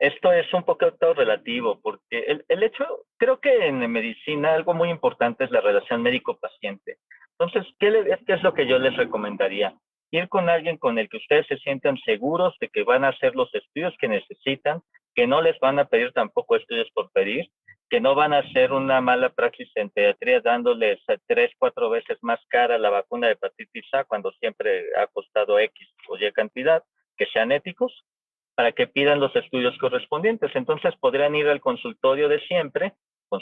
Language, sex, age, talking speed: Spanish, male, 40-59, 190 wpm